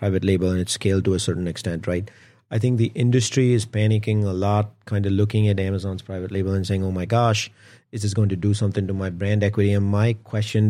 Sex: male